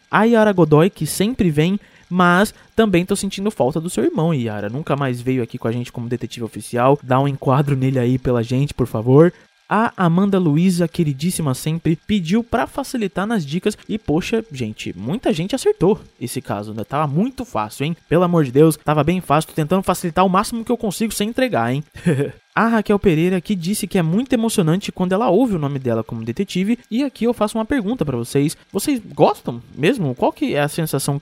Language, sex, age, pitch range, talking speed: Portuguese, male, 20-39, 130-190 Hz, 210 wpm